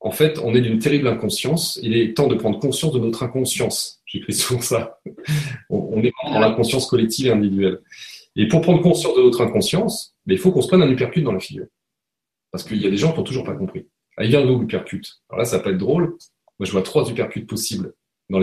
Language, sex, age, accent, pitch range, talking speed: French, male, 30-49, French, 100-150 Hz, 240 wpm